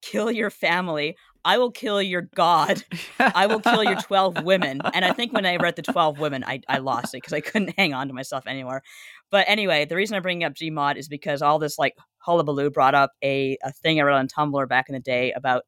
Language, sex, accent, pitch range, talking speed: English, female, American, 140-190 Hz, 240 wpm